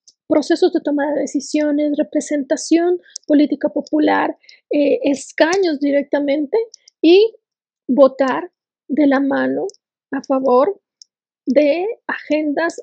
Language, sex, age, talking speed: Spanish, female, 30-49, 95 wpm